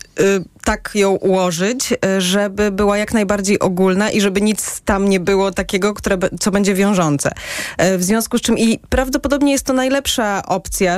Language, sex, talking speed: Polish, female, 155 wpm